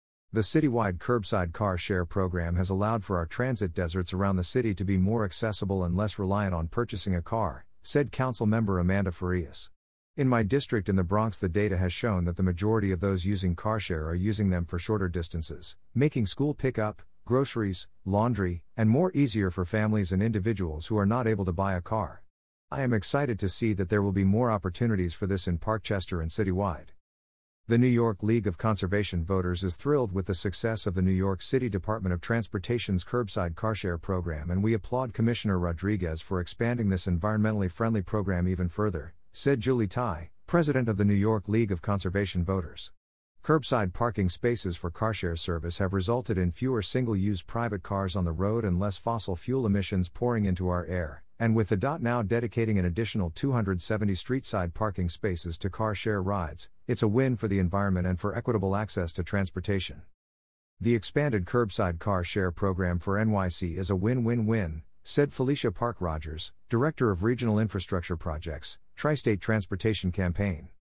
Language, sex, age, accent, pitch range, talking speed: English, male, 50-69, American, 90-115 Hz, 180 wpm